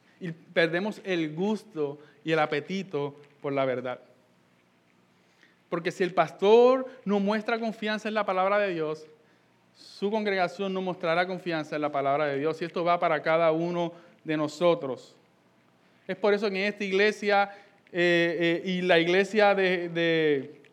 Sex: male